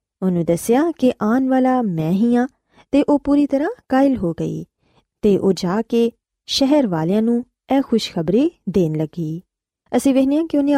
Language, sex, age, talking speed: Punjabi, female, 20-39, 165 wpm